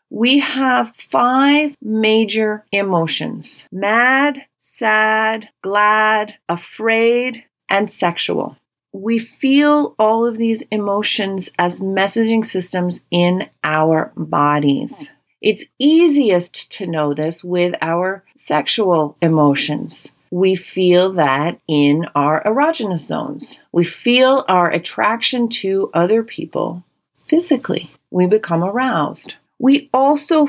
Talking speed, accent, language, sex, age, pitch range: 100 wpm, American, English, female, 40-59, 175-230 Hz